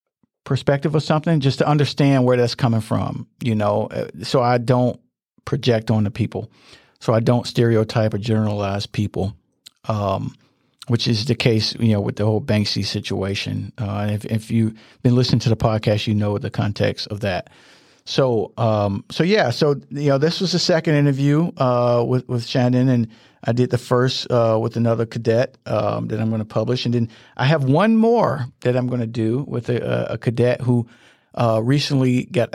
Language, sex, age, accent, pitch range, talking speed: English, male, 50-69, American, 110-130 Hz, 190 wpm